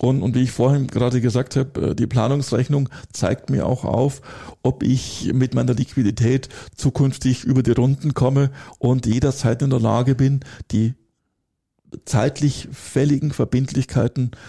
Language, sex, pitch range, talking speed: German, male, 120-140 Hz, 140 wpm